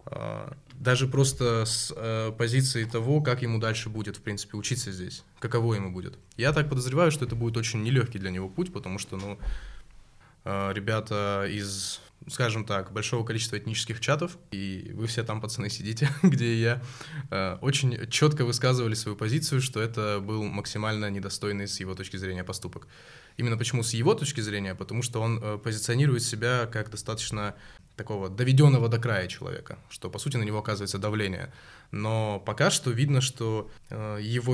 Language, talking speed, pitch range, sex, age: Russian, 160 wpm, 105-130 Hz, male, 20-39